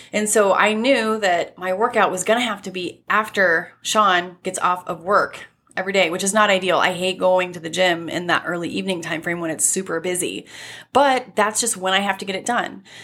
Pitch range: 180-220 Hz